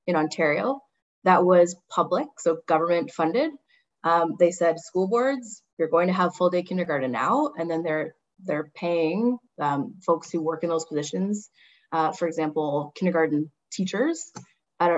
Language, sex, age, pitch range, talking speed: English, female, 20-39, 160-185 Hz, 155 wpm